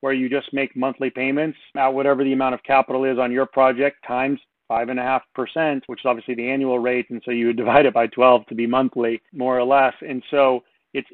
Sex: male